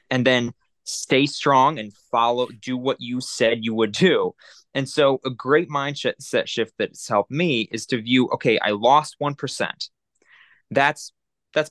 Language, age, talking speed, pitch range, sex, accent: English, 20-39, 170 wpm, 115-140 Hz, male, American